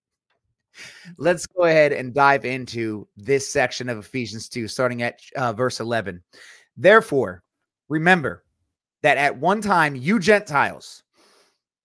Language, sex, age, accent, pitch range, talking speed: English, male, 30-49, American, 125-165 Hz, 120 wpm